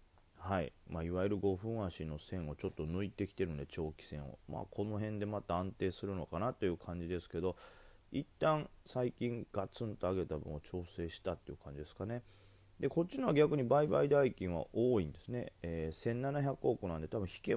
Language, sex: Japanese, male